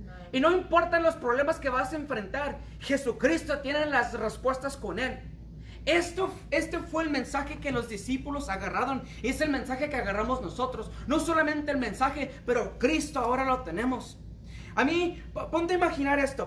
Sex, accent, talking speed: male, Mexican, 170 wpm